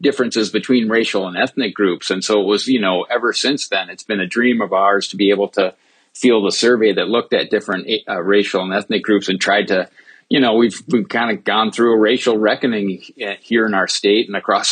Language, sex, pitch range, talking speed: English, male, 100-120 Hz, 230 wpm